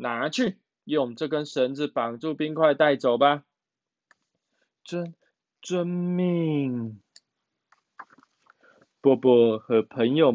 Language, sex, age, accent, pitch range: Chinese, male, 20-39, native, 110-160 Hz